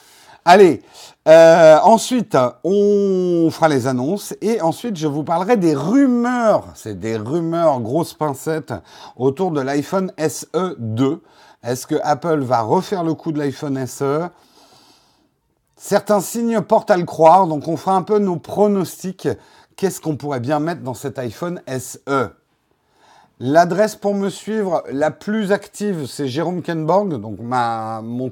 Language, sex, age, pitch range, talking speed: French, male, 50-69, 130-170 Hz, 145 wpm